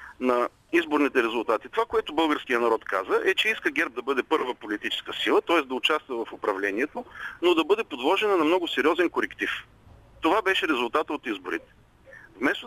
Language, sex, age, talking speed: Bulgarian, male, 40-59, 170 wpm